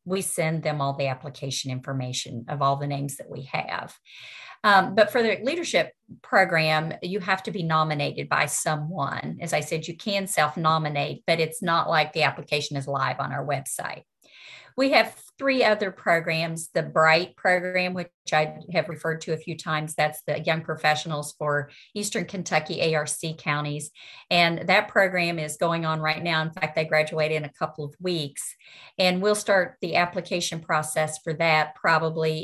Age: 50-69